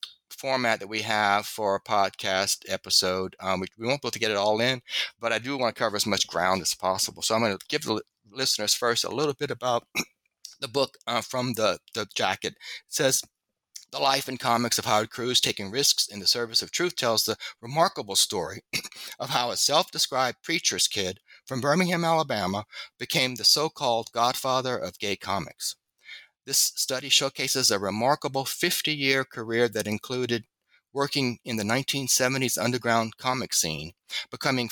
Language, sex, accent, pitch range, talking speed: English, male, American, 105-130 Hz, 175 wpm